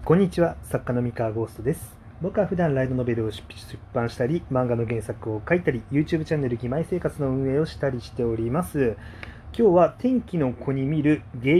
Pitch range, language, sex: 110-165 Hz, Japanese, male